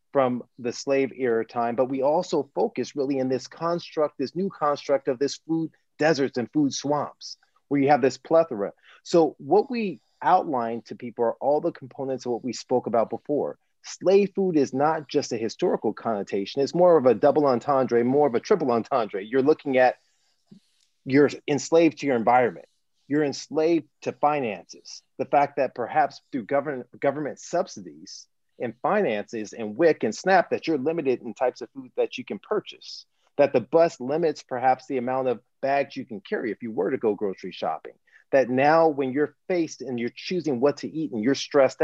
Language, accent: English, American